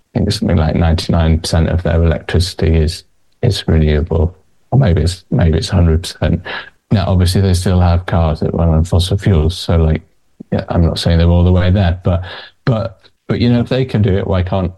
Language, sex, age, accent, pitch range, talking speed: English, male, 20-39, British, 85-100 Hz, 210 wpm